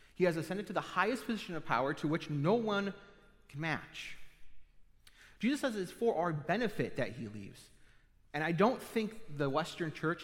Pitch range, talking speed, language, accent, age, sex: 130-175 Hz, 180 wpm, English, American, 30-49, male